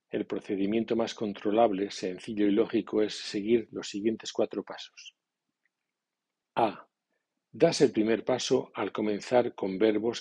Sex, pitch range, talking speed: male, 105-120 Hz, 130 wpm